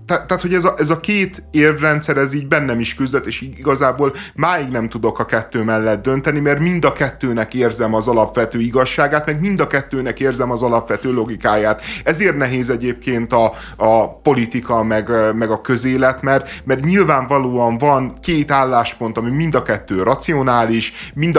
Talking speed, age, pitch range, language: 165 wpm, 30-49, 110-140 Hz, Hungarian